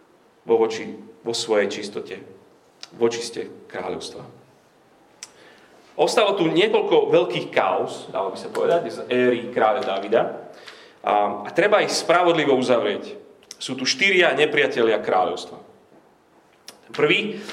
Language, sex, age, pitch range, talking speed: Slovak, male, 30-49, 130-215 Hz, 115 wpm